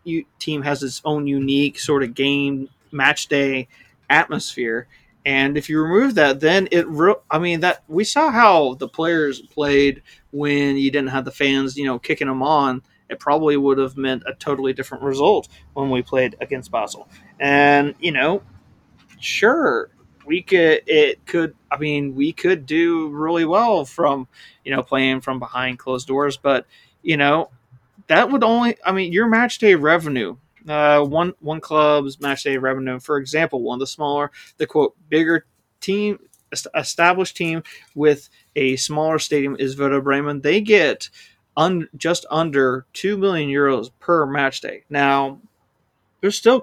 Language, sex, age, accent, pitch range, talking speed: English, male, 30-49, American, 135-165 Hz, 160 wpm